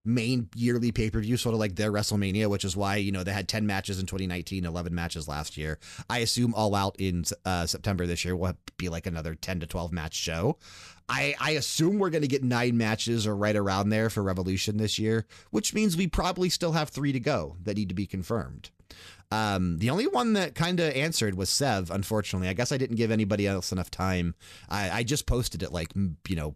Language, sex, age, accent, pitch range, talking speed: English, male, 30-49, American, 95-120 Hz, 225 wpm